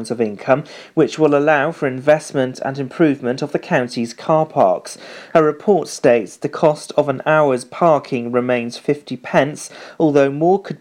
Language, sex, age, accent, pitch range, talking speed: English, male, 40-59, British, 125-155 Hz, 160 wpm